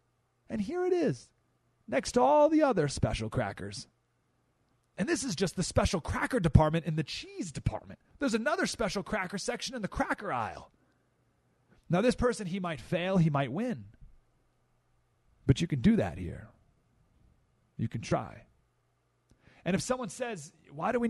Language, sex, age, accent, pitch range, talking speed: English, male, 40-59, American, 155-230 Hz, 160 wpm